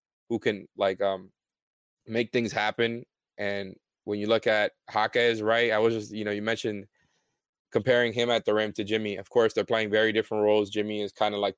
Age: 20-39